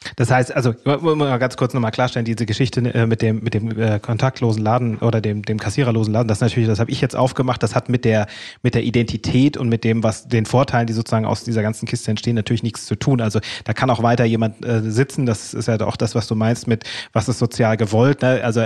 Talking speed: 240 wpm